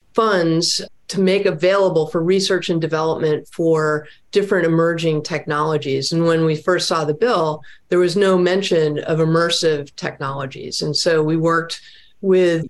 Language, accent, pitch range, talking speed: English, American, 165-205 Hz, 145 wpm